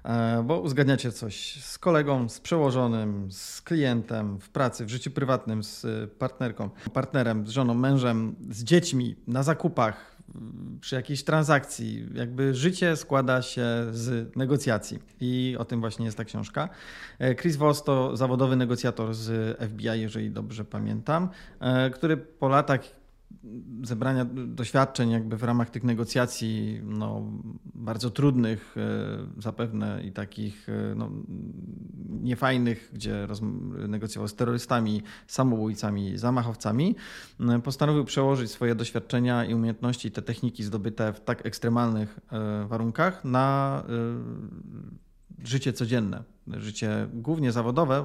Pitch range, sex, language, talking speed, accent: 110-130 Hz, male, Polish, 115 wpm, native